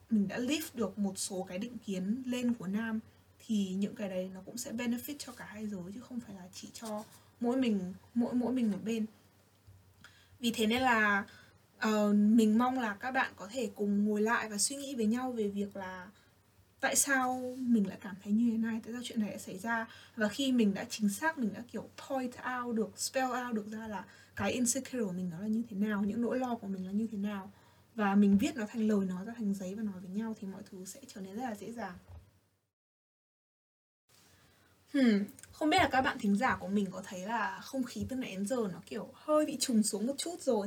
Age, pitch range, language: 20-39, 200-255 Hz, Vietnamese